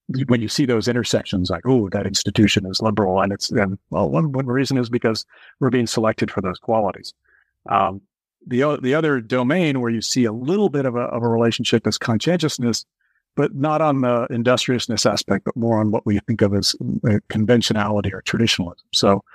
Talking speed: 190 wpm